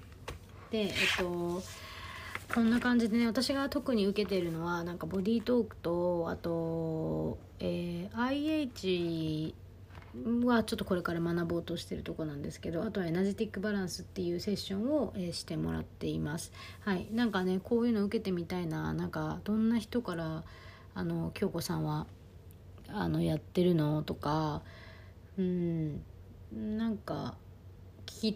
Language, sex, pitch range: Japanese, female, 150-210 Hz